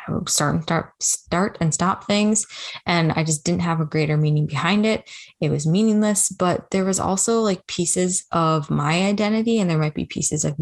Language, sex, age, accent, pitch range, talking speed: English, female, 20-39, American, 155-195 Hz, 185 wpm